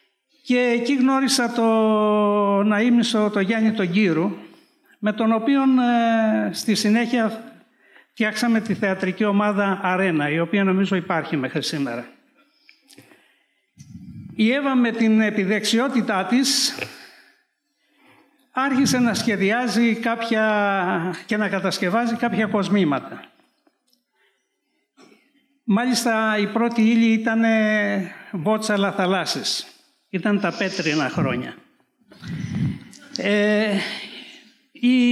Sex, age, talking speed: male, 60-79, 90 wpm